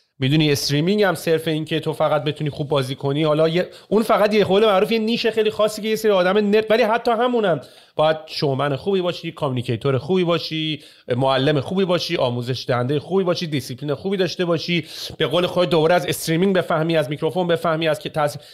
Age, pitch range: 30-49, 145-190 Hz